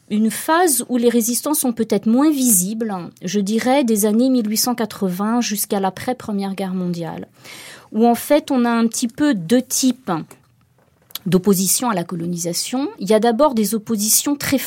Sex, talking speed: female, 165 wpm